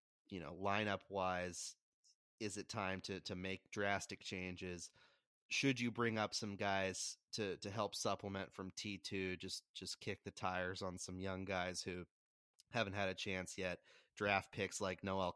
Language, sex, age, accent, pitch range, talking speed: English, male, 30-49, American, 90-105 Hz, 165 wpm